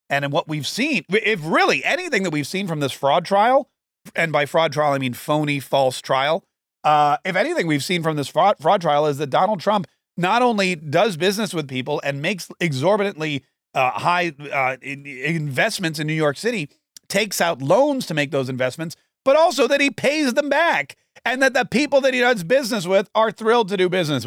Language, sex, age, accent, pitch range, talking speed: English, male, 40-59, American, 145-205 Hz, 205 wpm